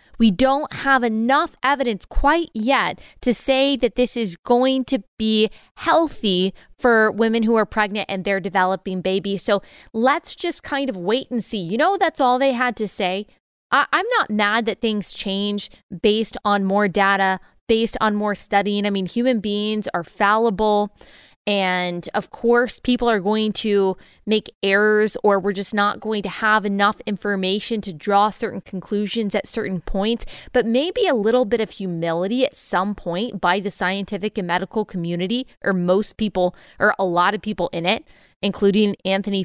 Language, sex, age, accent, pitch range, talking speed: English, female, 20-39, American, 200-235 Hz, 175 wpm